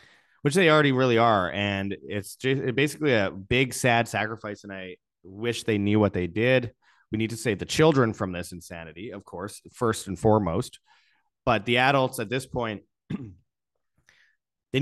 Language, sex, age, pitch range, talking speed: English, male, 30-49, 95-120 Hz, 165 wpm